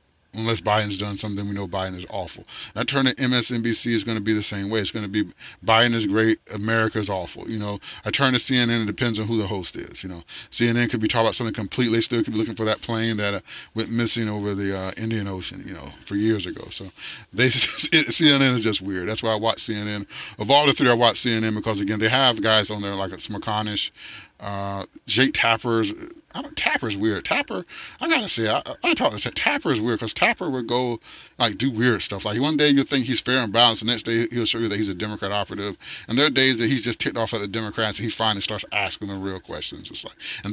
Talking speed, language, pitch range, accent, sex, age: 250 wpm, English, 105-120 Hz, American, male, 30-49